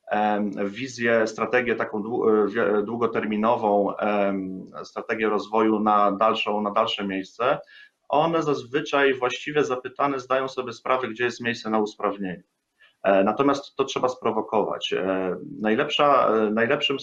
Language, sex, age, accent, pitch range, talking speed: Polish, male, 30-49, native, 105-125 Hz, 95 wpm